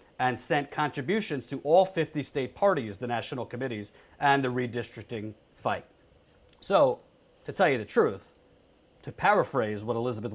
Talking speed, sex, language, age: 145 wpm, male, English, 40-59